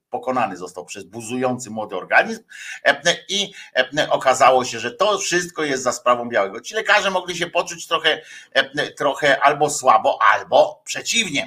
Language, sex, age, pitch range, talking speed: Polish, male, 50-69, 120-165 Hz, 140 wpm